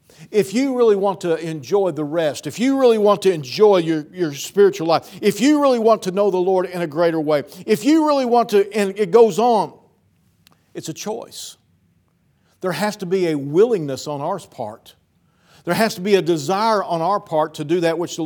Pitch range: 130-210 Hz